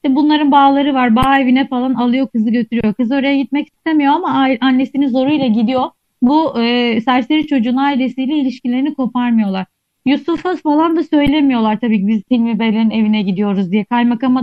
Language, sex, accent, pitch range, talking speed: Turkish, female, native, 215-275 Hz, 155 wpm